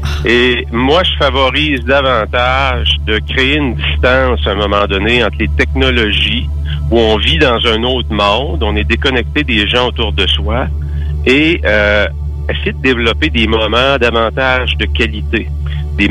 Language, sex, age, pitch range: English, male, 50-69, 75-80 Hz